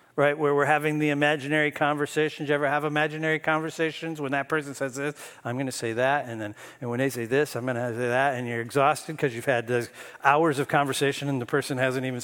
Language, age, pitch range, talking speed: English, 50-69, 140-175 Hz, 240 wpm